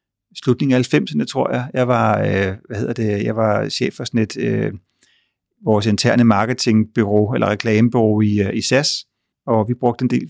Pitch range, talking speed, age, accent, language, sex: 110-125 Hz, 180 wpm, 30-49, native, Danish, male